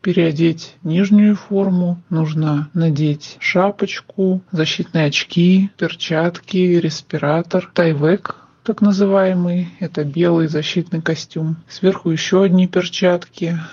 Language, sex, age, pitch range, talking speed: Russian, male, 40-59, 155-185 Hz, 90 wpm